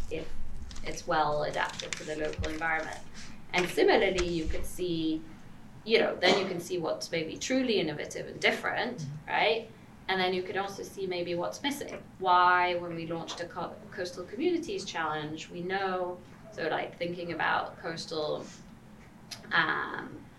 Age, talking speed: 20-39, 150 wpm